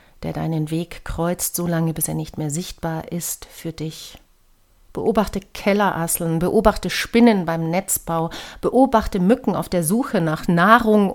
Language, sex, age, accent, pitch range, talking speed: German, female, 40-59, German, 155-205 Hz, 145 wpm